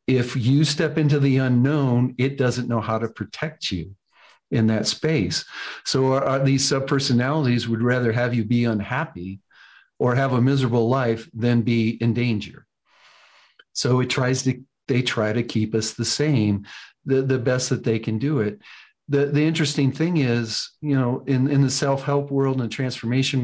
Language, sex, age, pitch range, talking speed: English, male, 50-69, 115-140 Hz, 175 wpm